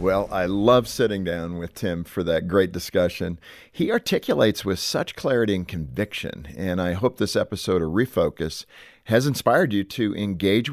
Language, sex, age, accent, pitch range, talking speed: English, male, 50-69, American, 95-125 Hz, 170 wpm